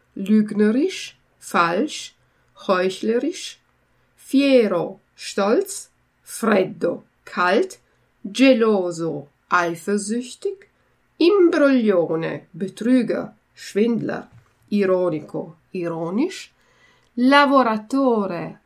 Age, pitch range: 50-69, 190-275 Hz